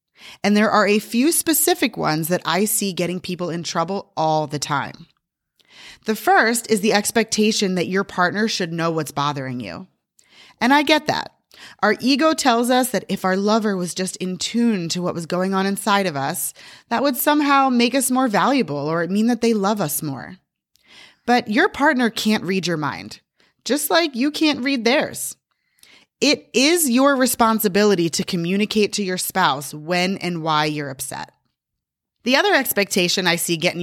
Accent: American